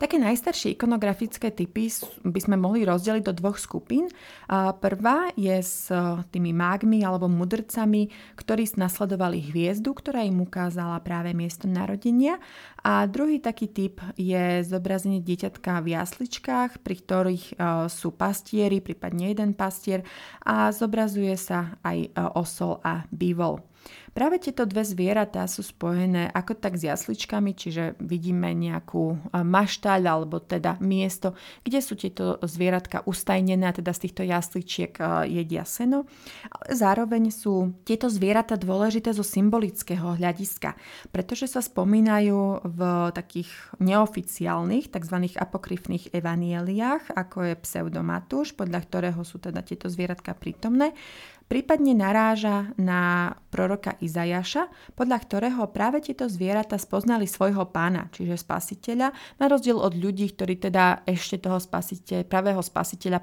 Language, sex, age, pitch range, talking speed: Slovak, female, 30-49, 175-220 Hz, 125 wpm